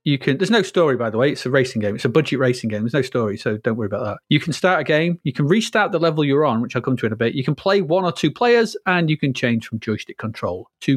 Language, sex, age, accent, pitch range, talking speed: English, male, 30-49, British, 130-185 Hz, 325 wpm